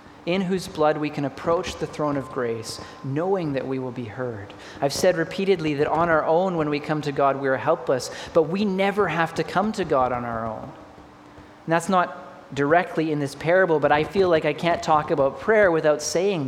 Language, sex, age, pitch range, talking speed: English, male, 30-49, 135-175 Hz, 220 wpm